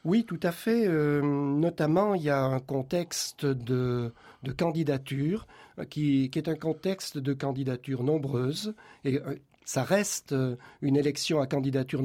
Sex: male